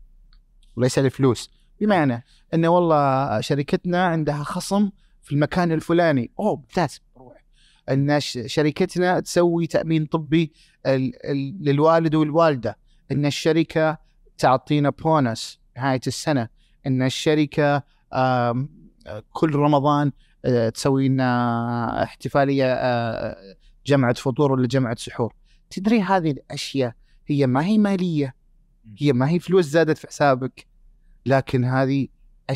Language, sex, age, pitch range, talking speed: Arabic, male, 30-49, 125-160 Hz, 105 wpm